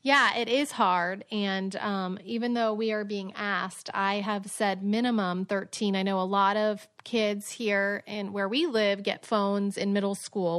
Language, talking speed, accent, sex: English, 185 wpm, American, female